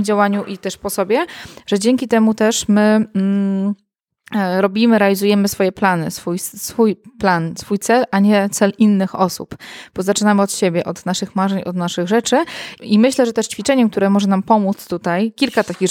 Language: Polish